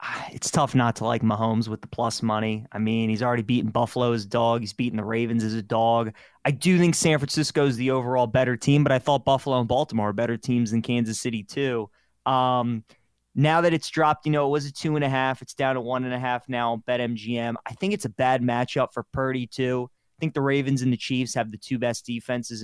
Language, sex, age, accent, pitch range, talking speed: English, male, 20-39, American, 120-140 Hz, 250 wpm